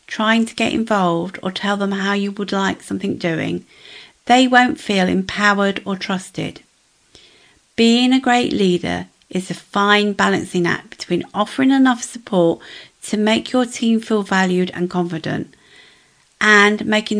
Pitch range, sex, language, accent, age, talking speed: 180-230 Hz, female, English, British, 50-69, 145 wpm